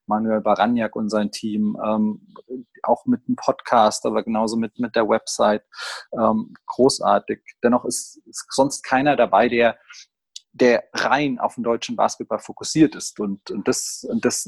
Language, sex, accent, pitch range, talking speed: German, male, German, 110-125 Hz, 155 wpm